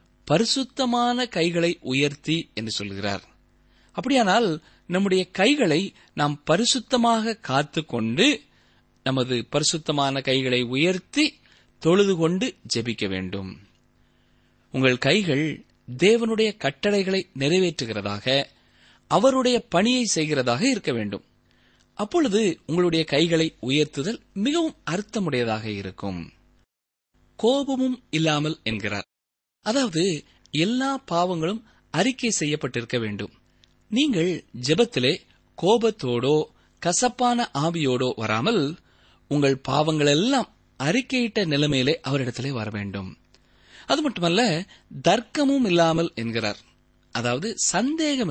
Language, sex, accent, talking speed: Tamil, male, native, 80 wpm